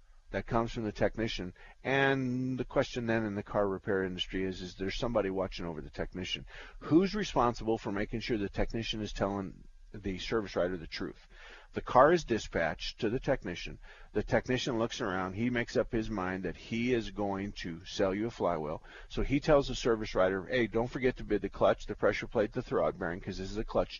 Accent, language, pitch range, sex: American, English, 95-120 Hz, male